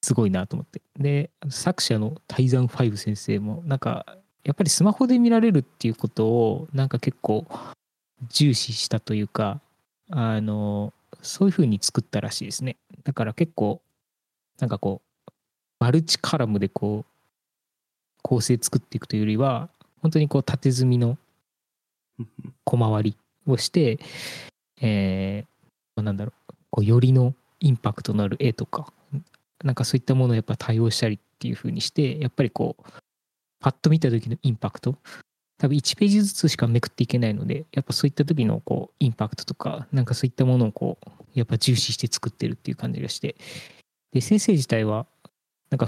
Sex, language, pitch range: male, Japanese, 115-145 Hz